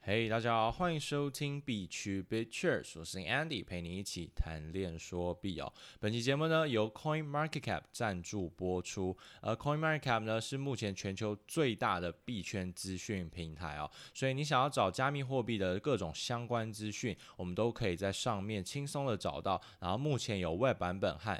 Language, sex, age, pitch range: Chinese, male, 20-39, 90-120 Hz